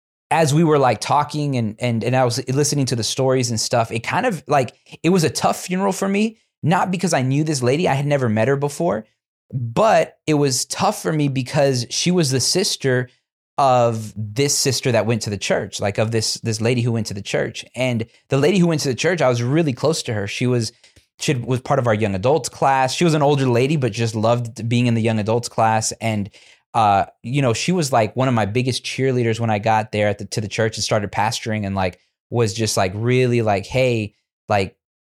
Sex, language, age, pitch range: male, English, 20-39, 115-140 Hz